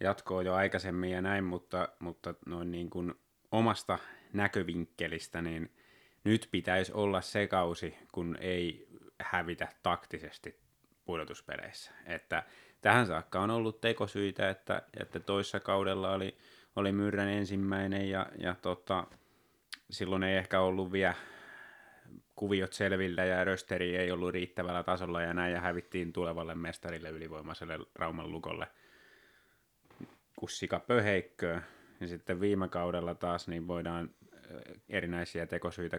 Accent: native